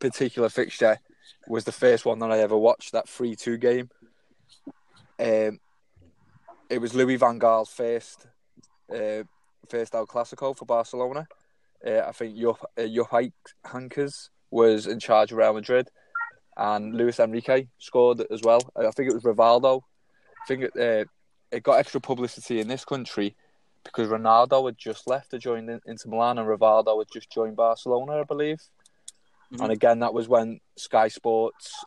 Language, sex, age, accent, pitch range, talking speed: English, male, 20-39, British, 110-125 Hz, 160 wpm